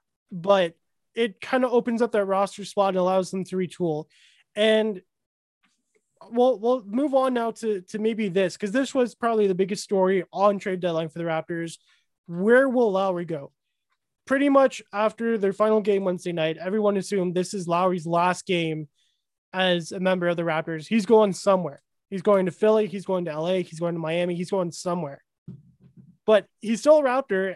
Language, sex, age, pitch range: English, male, 20-39, 175-215 Hz